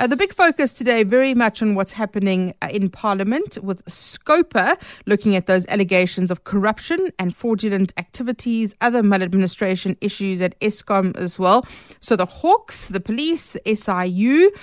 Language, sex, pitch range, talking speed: English, female, 190-245 Hz, 150 wpm